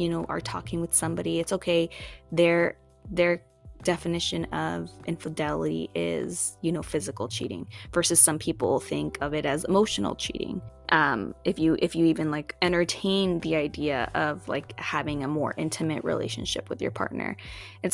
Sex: female